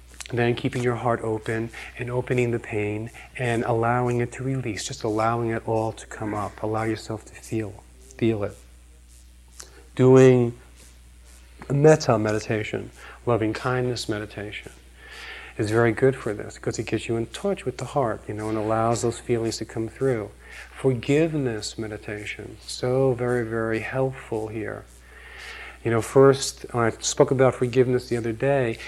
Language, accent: English, American